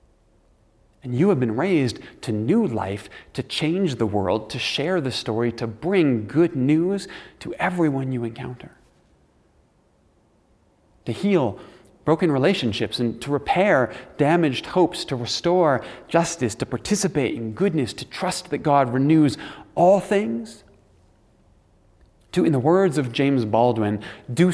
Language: English